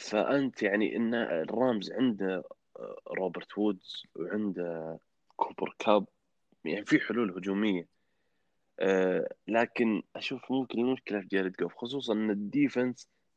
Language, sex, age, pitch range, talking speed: Arabic, male, 20-39, 90-115 Hz, 110 wpm